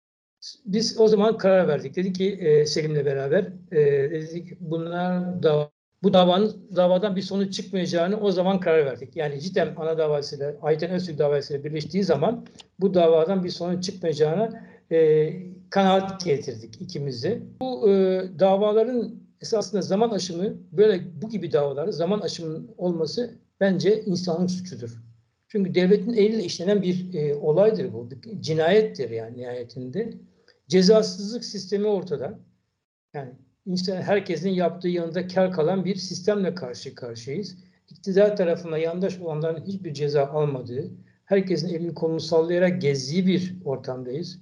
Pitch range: 160-205 Hz